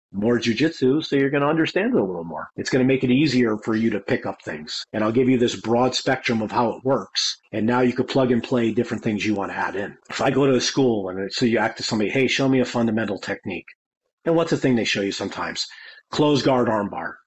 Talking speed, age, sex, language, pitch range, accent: 270 wpm, 40-59, male, English, 115-140 Hz, American